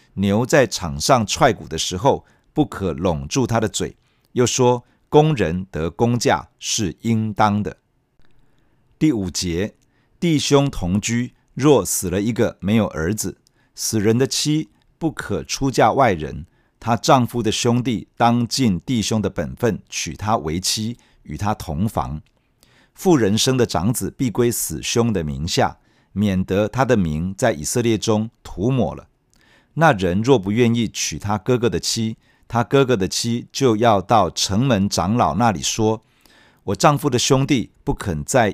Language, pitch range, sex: Chinese, 95-130 Hz, male